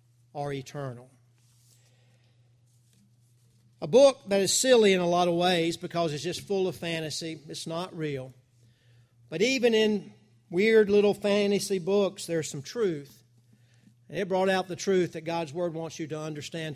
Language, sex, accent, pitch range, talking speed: English, male, American, 125-180 Hz, 160 wpm